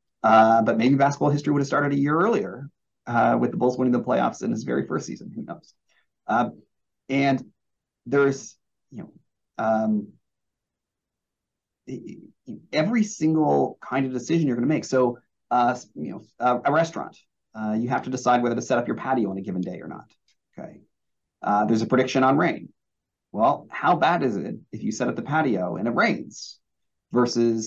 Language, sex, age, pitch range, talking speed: English, male, 30-49, 105-130 Hz, 185 wpm